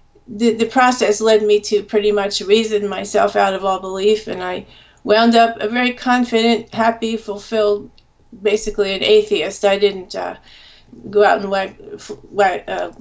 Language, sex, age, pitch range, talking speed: English, female, 40-59, 200-235 Hz, 155 wpm